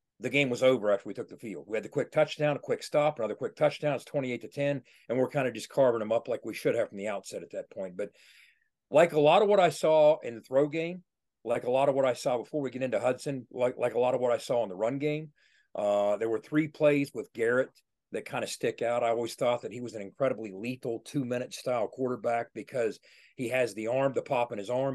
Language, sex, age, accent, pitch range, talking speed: English, male, 40-59, American, 120-150 Hz, 270 wpm